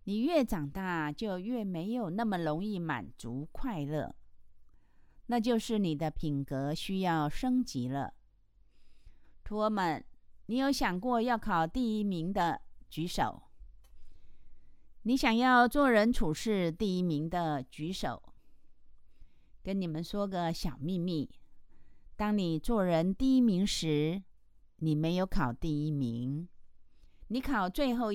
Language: Chinese